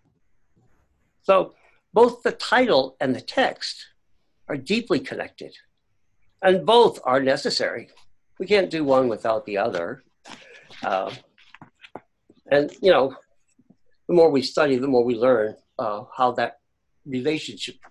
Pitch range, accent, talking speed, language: 155-220 Hz, American, 125 wpm, English